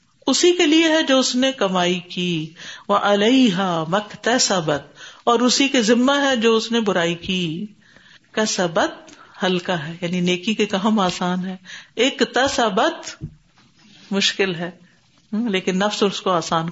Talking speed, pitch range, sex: 145 wpm, 180-240 Hz, female